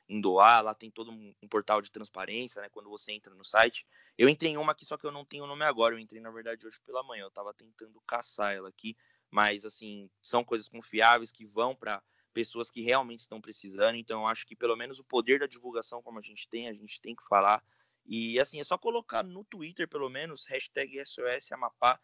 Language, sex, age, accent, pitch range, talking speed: Portuguese, male, 20-39, Brazilian, 105-125 Hz, 225 wpm